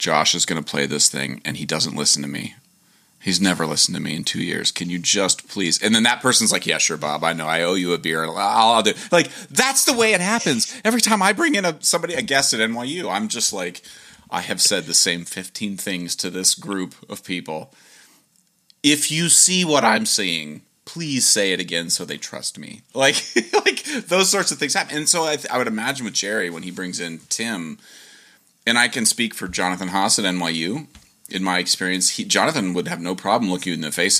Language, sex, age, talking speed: English, male, 30-49, 235 wpm